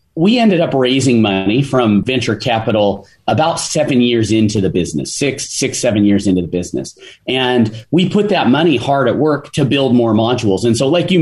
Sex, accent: male, American